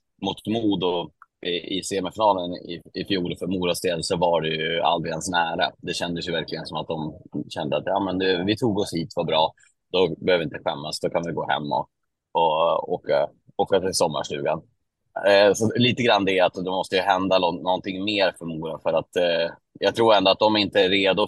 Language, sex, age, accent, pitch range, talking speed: Swedish, male, 30-49, native, 85-100 Hz, 210 wpm